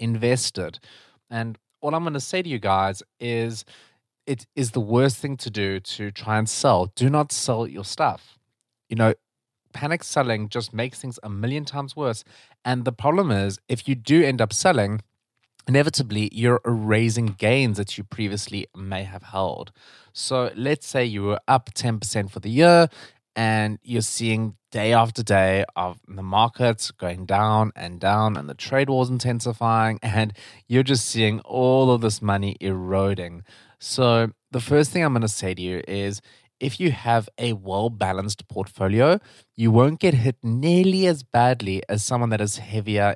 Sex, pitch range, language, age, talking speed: male, 105-125 Hz, English, 20-39, 170 wpm